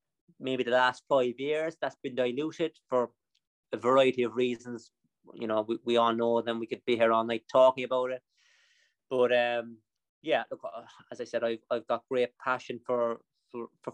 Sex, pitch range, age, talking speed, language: male, 120-140 Hz, 30-49, 185 wpm, English